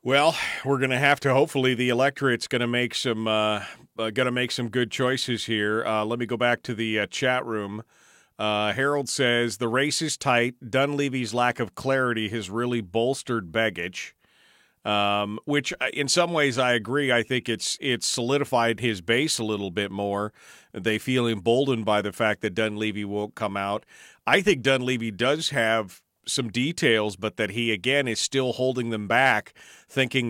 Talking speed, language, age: 175 wpm, English, 40-59